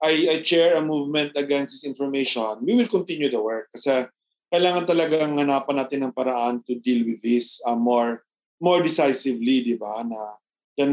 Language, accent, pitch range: Filipino, native, 130-180 Hz